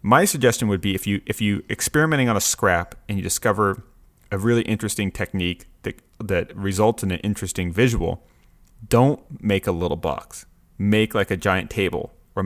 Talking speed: 180 wpm